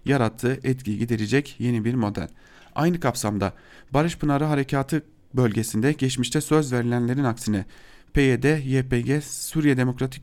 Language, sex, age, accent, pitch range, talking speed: German, male, 40-59, Turkish, 115-150 Hz, 115 wpm